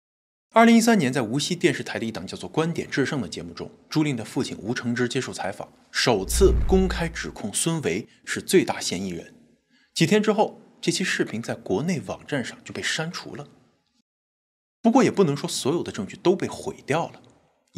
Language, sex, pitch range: Chinese, male, 125-205 Hz